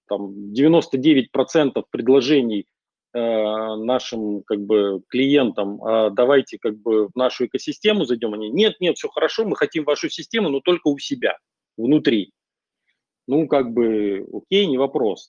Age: 40-59